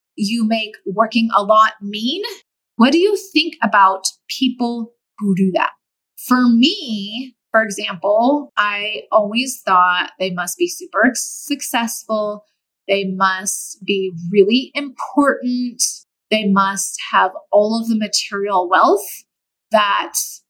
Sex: female